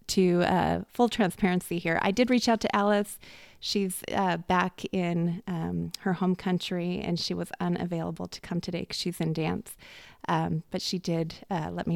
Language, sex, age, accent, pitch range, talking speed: English, female, 30-49, American, 170-195 Hz, 185 wpm